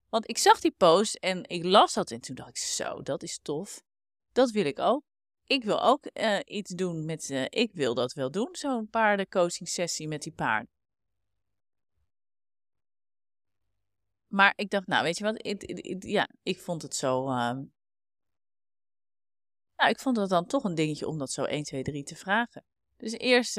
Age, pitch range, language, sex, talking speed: 30-49, 145-210 Hz, Dutch, female, 180 wpm